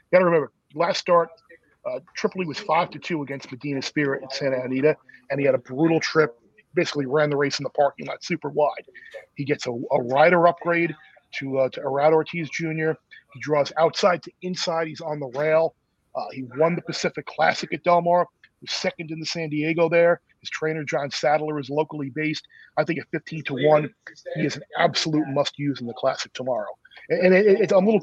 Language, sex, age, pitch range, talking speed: English, male, 40-59, 135-160 Hz, 215 wpm